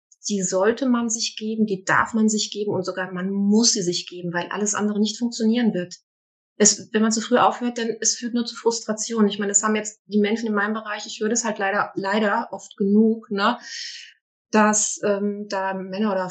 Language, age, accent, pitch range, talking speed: German, 20-39, German, 200-230 Hz, 215 wpm